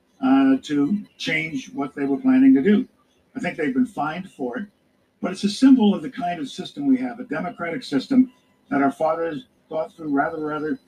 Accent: American